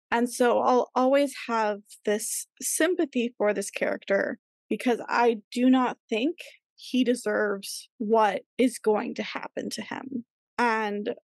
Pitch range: 215-265 Hz